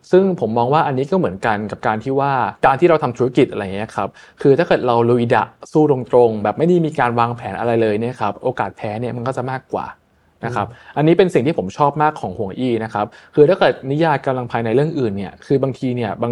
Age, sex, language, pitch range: 20-39, male, Thai, 115-140 Hz